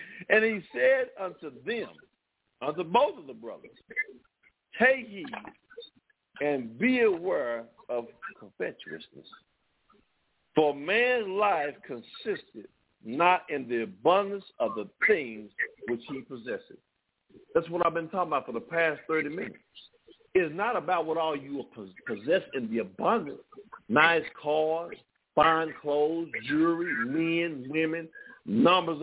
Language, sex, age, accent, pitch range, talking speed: English, male, 50-69, American, 160-250 Hz, 125 wpm